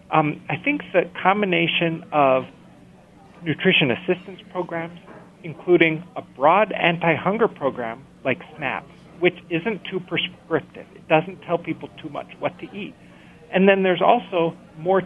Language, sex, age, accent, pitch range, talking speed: English, male, 40-59, American, 155-185 Hz, 135 wpm